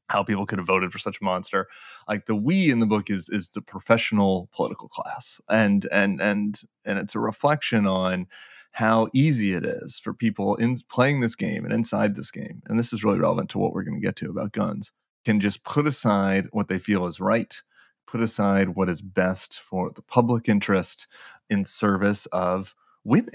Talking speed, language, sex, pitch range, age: 205 wpm, English, male, 100-120 Hz, 30-49